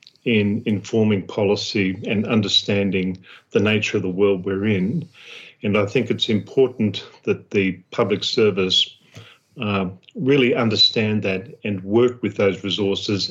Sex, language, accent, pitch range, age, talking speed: male, English, Australian, 100-115 Hz, 50-69, 135 wpm